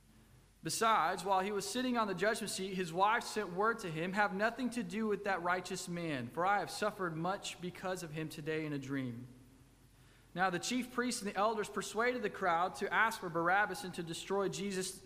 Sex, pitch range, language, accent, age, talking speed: male, 170-210 Hz, English, American, 20-39, 210 wpm